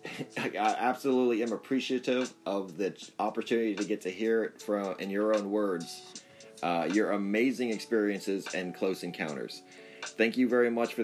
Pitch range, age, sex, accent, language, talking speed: 95-115 Hz, 30-49, male, American, English, 160 wpm